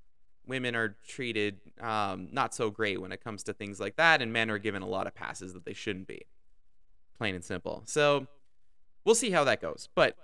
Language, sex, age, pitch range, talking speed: English, male, 20-39, 100-155 Hz, 210 wpm